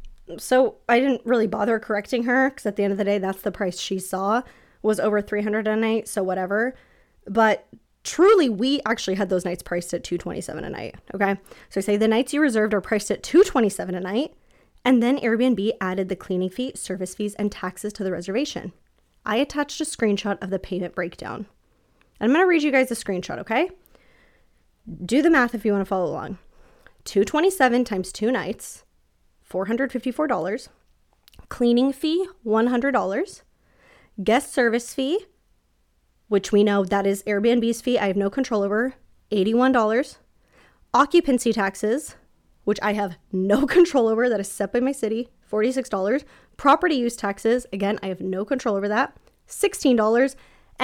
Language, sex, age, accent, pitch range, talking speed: English, female, 20-39, American, 195-255 Hz, 175 wpm